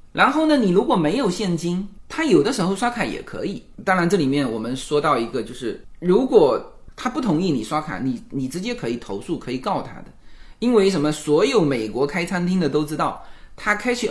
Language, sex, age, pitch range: Chinese, male, 20-39, 145-210 Hz